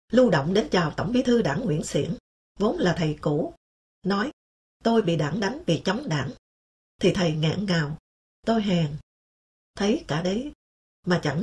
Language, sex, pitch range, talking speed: English, female, 165-225 Hz, 175 wpm